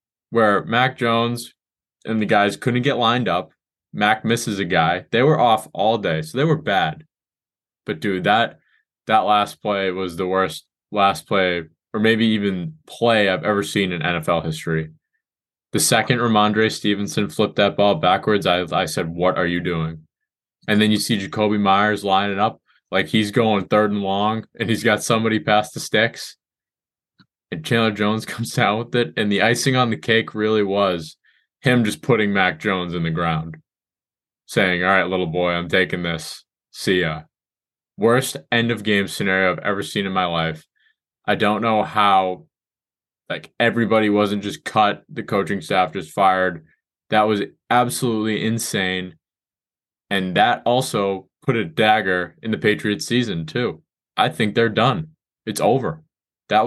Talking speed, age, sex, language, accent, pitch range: 165 wpm, 20-39, male, English, American, 90-115 Hz